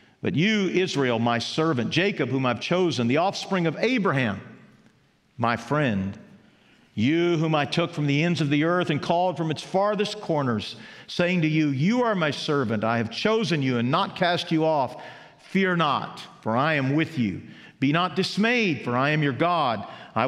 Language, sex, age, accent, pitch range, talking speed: English, male, 50-69, American, 125-185 Hz, 185 wpm